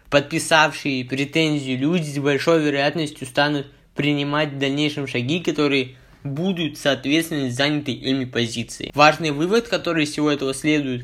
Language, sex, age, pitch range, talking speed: Russian, male, 20-39, 135-155 Hz, 130 wpm